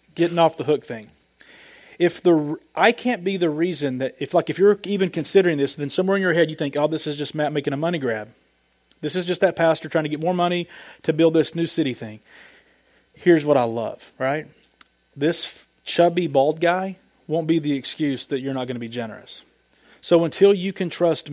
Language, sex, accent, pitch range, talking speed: English, male, American, 150-190 Hz, 215 wpm